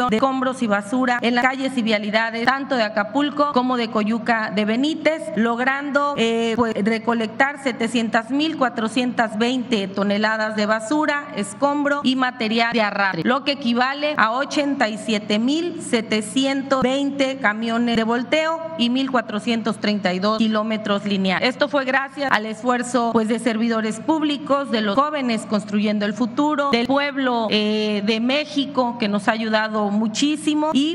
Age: 30-49